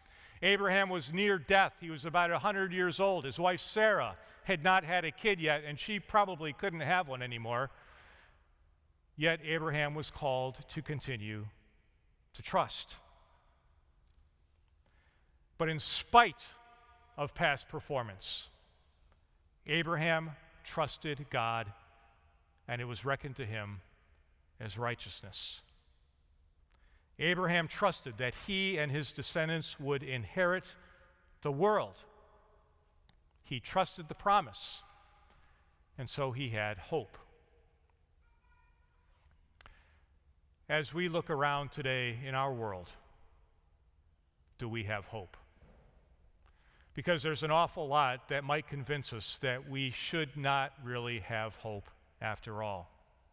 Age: 40-59